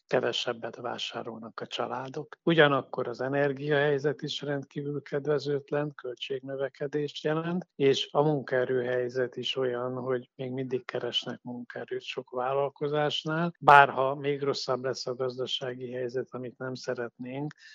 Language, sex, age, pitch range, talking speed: Hungarian, male, 50-69, 120-140 Hz, 115 wpm